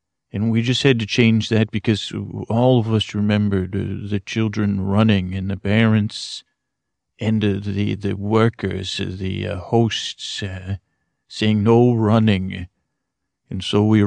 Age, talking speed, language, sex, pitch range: 40-59, 130 wpm, English, male, 95-110 Hz